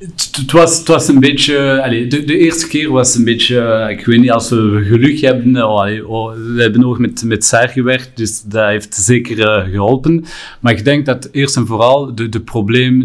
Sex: male